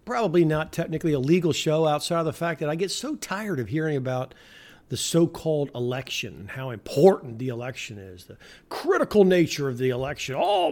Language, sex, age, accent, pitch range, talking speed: English, male, 50-69, American, 130-185 Hz, 190 wpm